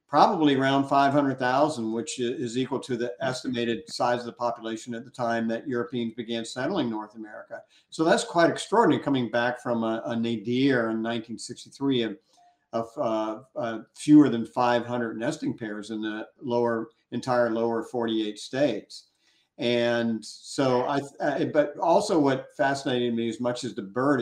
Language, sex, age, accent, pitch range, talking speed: English, male, 50-69, American, 115-145 Hz, 150 wpm